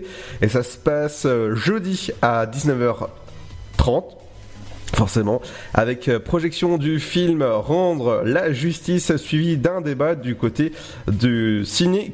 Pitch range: 120-170 Hz